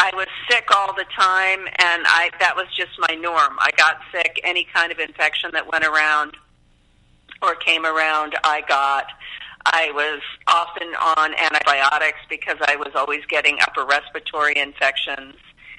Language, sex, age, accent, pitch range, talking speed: English, female, 50-69, American, 145-170 Hz, 155 wpm